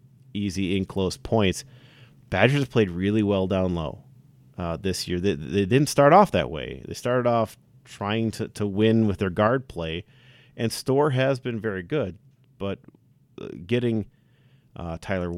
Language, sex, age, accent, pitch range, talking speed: English, male, 40-59, American, 95-130 Hz, 165 wpm